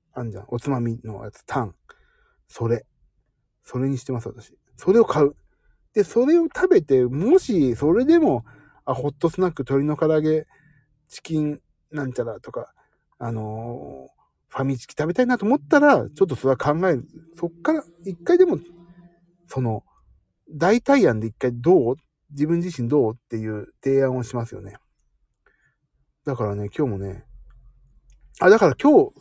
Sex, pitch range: male, 120-175 Hz